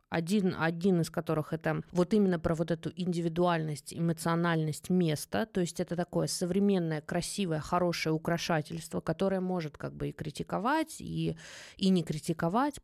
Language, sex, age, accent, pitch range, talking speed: Russian, female, 20-39, native, 160-210 Hz, 145 wpm